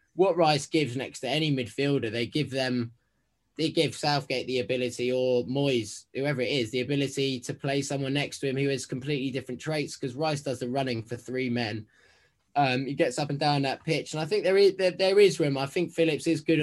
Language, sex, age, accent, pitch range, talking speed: English, male, 20-39, British, 110-140 Hz, 225 wpm